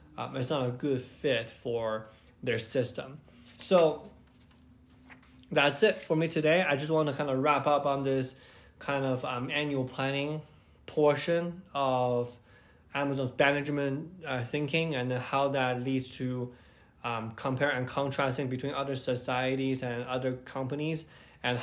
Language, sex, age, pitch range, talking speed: English, male, 20-39, 120-140 Hz, 145 wpm